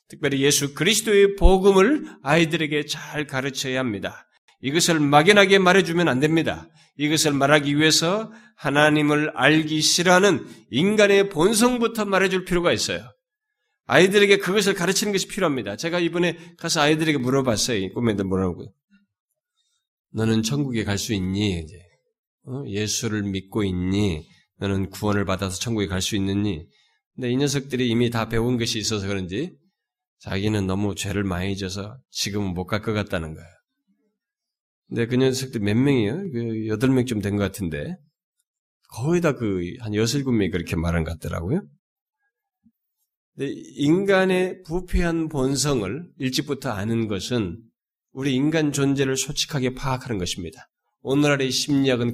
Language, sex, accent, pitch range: Korean, male, native, 105-175 Hz